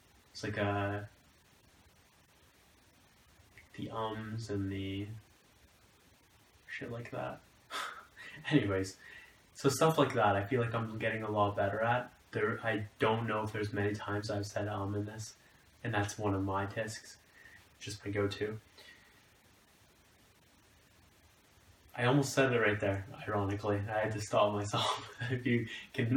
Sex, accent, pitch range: male, American, 100-120 Hz